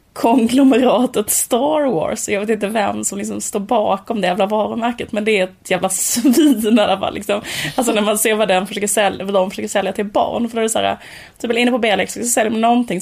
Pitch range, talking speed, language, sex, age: 200-245 Hz, 230 wpm, Swedish, female, 20-39